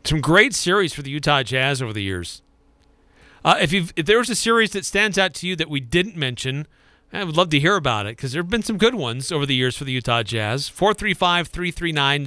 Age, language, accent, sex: 40-59, English, American, male